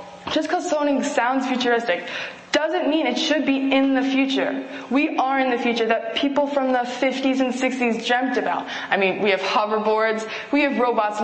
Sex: female